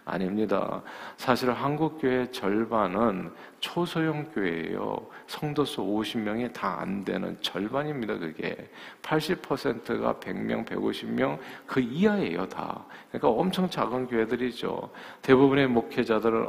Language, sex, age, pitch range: Korean, male, 40-59, 105-145 Hz